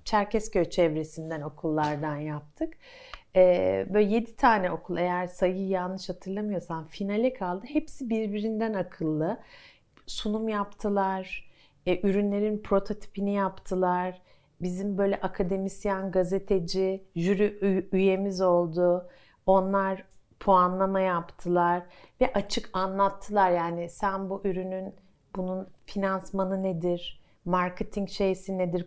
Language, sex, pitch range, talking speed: Turkish, female, 175-210 Hz, 95 wpm